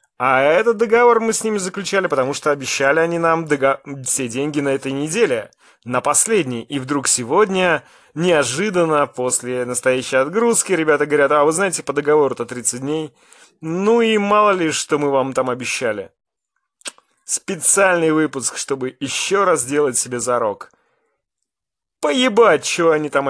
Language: English